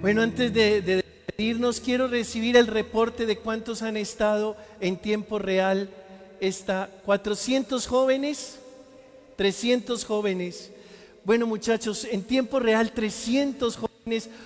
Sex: male